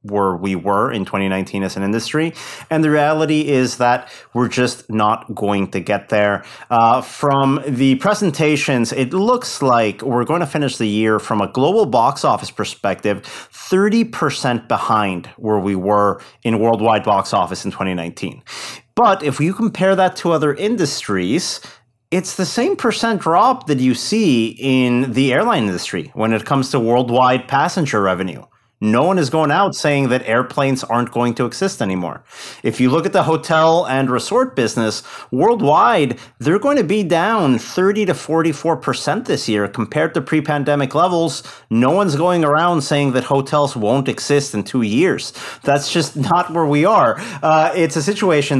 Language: English